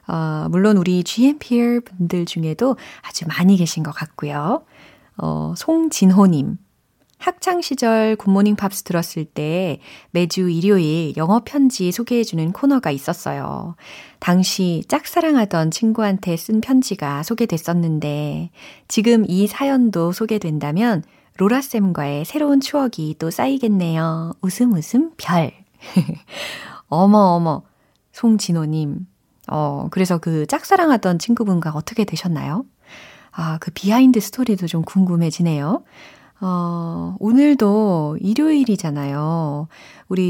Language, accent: Korean, native